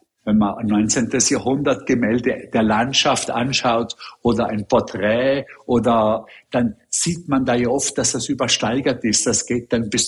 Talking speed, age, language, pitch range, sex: 155 wpm, 50-69, German, 115-135 Hz, male